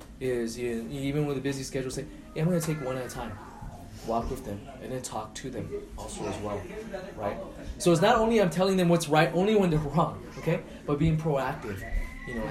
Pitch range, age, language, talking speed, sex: 125-165 Hz, 20-39, English, 220 wpm, male